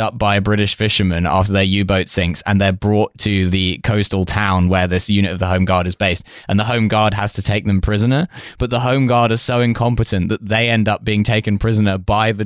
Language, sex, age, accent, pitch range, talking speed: English, male, 10-29, British, 100-120 Hz, 235 wpm